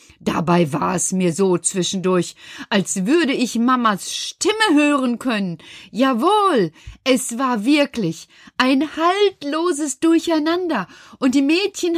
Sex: female